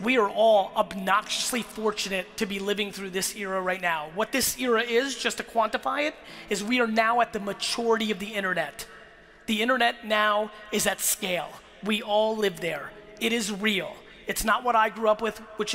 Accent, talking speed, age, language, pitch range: American, 200 wpm, 30-49, English, 215-265 Hz